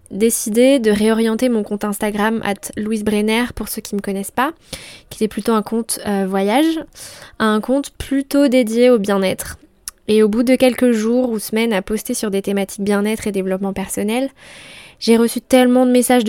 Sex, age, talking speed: female, 10-29, 200 wpm